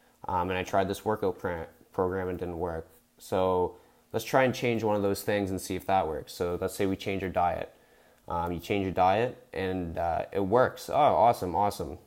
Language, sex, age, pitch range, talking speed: English, male, 20-39, 95-110 Hz, 220 wpm